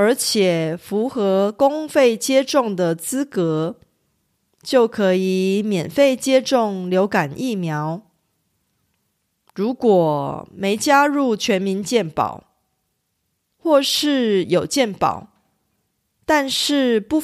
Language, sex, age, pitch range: Korean, female, 30-49, 185-265 Hz